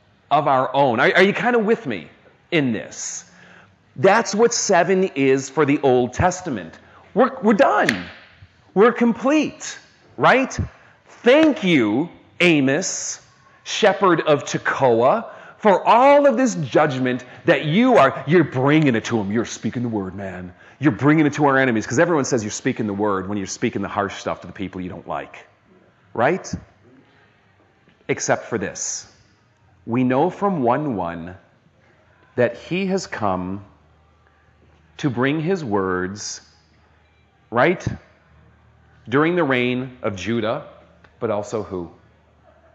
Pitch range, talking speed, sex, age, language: 95-140 Hz, 140 wpm, male, 40-59, English